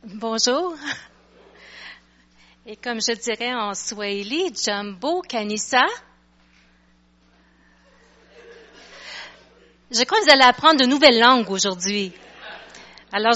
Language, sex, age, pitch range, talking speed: French, female, 40-59, 225-305 Hz, 90 wpm